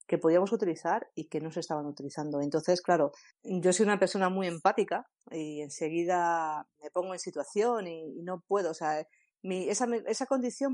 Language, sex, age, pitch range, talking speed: Spanish, female, 40-59, 155-195 Hz, 180 wpm